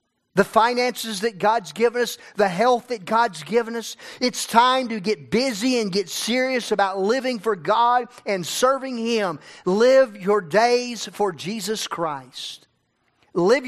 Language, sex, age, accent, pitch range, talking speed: English, male, 50-69, American, 175-220 Hz, 150 wpm